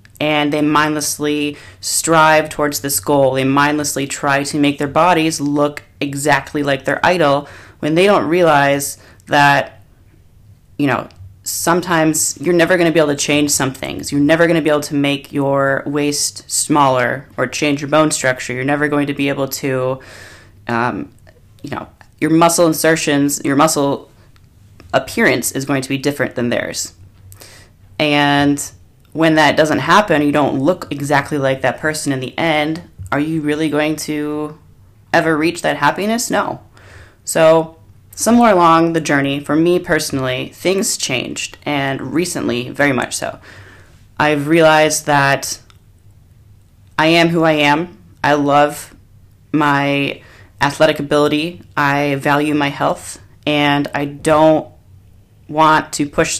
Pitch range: 125-155 Hz